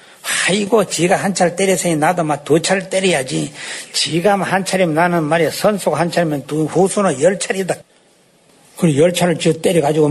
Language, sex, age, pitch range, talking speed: English, male, 60-79, 155-195 Hz, 155 wpm